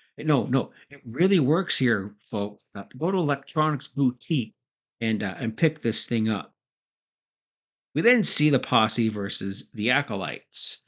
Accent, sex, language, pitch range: American, male, English, 115-140 Hz